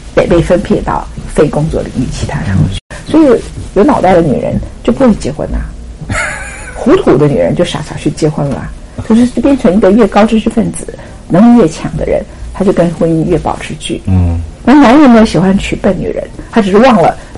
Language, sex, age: Chinese, female, 50-69